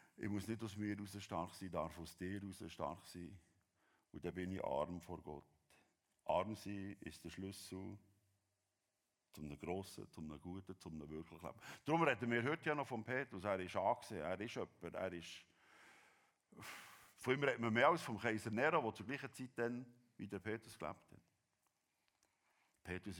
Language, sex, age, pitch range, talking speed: German, male, 50-69, 85-110 Hz, 185 wpm